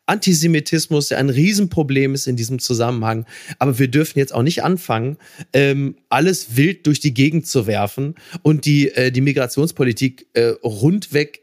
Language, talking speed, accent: German, 135 wpm, German